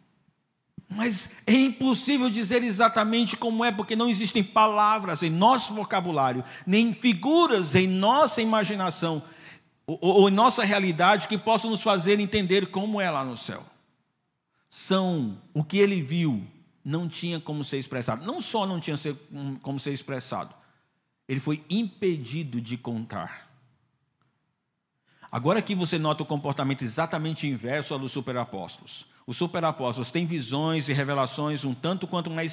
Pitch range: 130-185 Hz